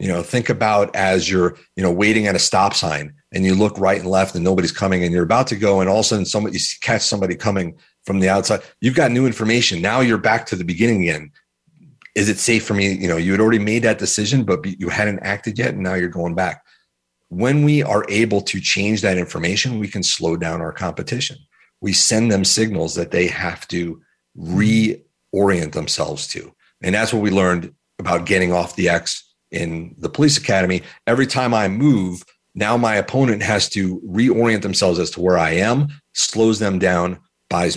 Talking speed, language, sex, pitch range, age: 210 wpm, English, male, 90-110 Hz, 40-59